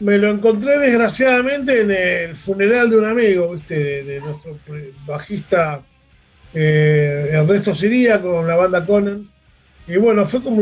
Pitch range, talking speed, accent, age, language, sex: 160-215 Hz, 145 wpm, Argentinian, 30-49, Spanish, male